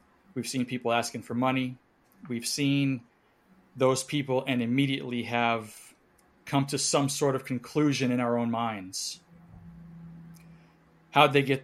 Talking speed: 135 wpm